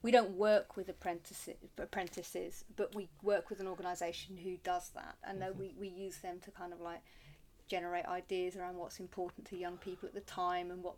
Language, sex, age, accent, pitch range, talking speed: English, female, 30-49, British, 185-225 Hz, 200 wpm